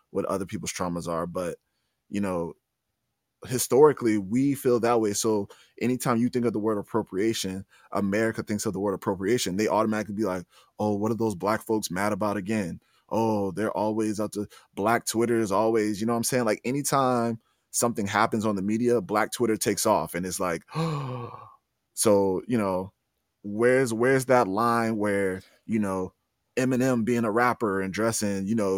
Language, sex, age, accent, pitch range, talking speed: English, male, 20-39, American, 100-120 Hz, 180 wpm